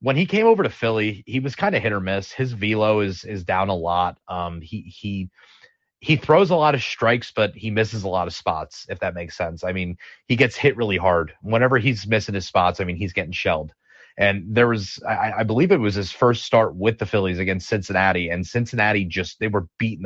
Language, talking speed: English, 235 wpm